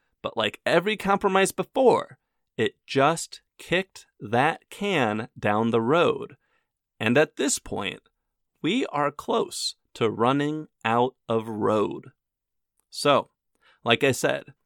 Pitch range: 120-195 Hz